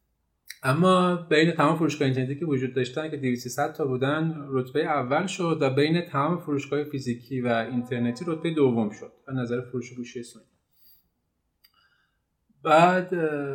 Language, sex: Persian, male